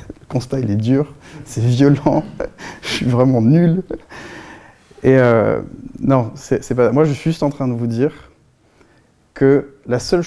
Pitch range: 110-140 Hz